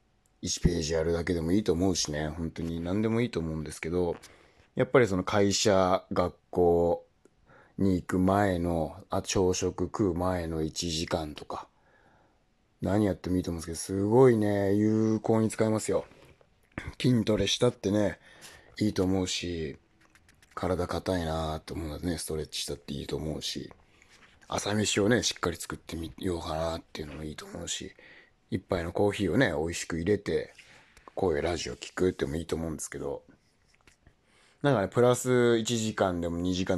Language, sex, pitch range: Japanese, male, 85-110 Hz